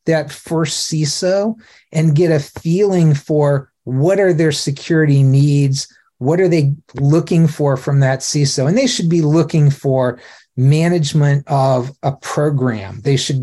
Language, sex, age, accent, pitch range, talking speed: English, male, 40-59, American, 135-165 Hz, 150 wpm